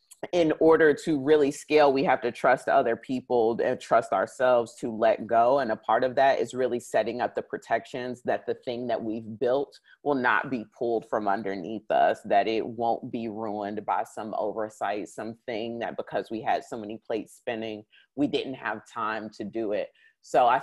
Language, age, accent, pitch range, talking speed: English, 30-49, American, 110-130 Hz, 195 wpm